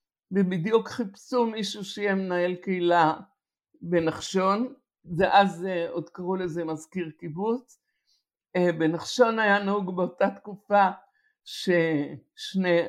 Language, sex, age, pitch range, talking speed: Hebrew, male, 60-79, 180-230 Hz, 90 wpm